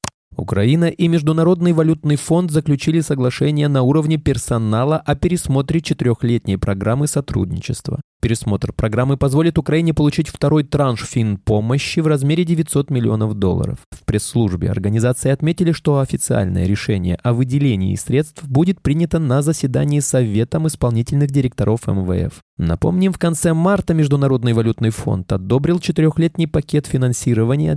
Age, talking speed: 20-39, 125 wpm